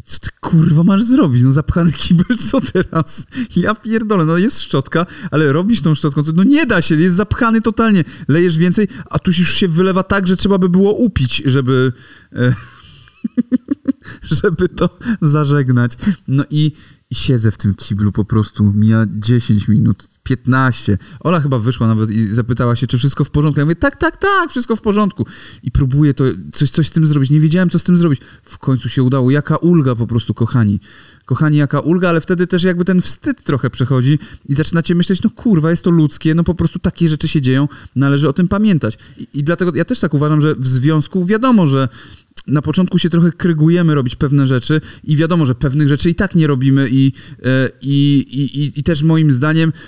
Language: Polish